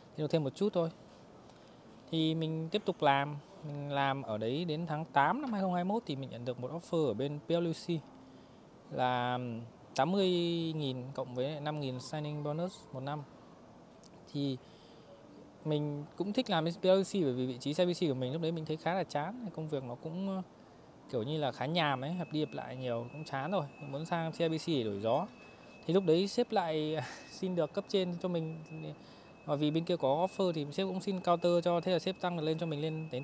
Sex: male